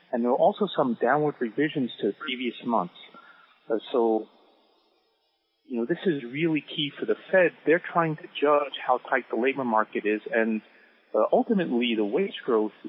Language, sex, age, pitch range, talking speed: English, male, 30-49, 115-165 Hz, 170 wpm